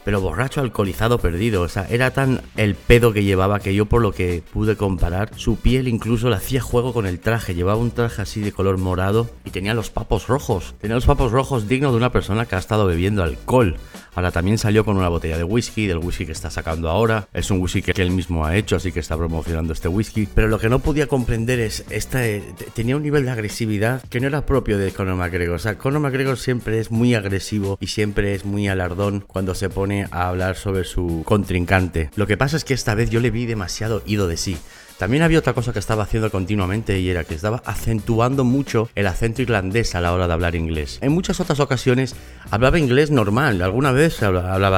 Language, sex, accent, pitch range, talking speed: Spanish, male, Spanish, 90-115 Hz, 220 wpm